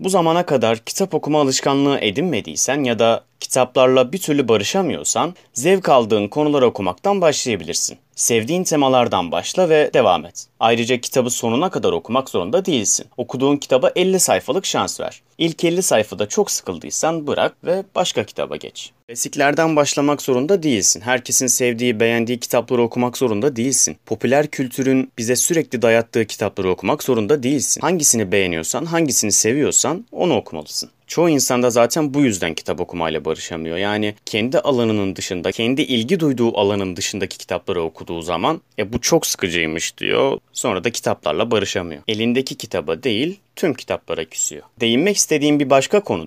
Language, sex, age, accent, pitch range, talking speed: Turkish, male, 30-49, native, 115-150 Hz, 145 wpm